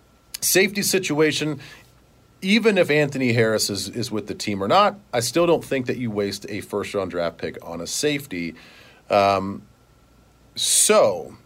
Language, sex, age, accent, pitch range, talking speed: English, male, 40-59, American, 105-155 Hz, 150 wpm